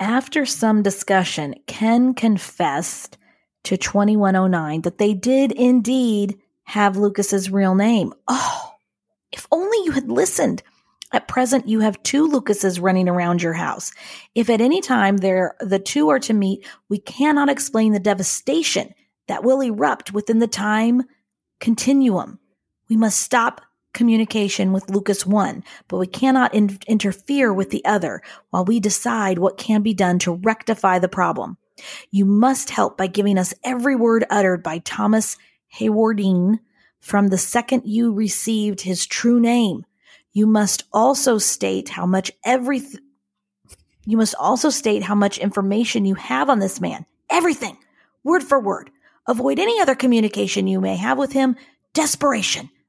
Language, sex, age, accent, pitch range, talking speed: English, female, 40-59, American, 195-255 Hz, 150 wpm